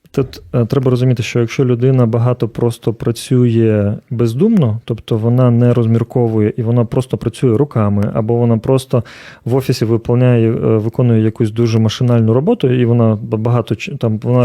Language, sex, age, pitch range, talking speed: Ukrainian, male, 30-49, 115-135 Hz, 145 wpm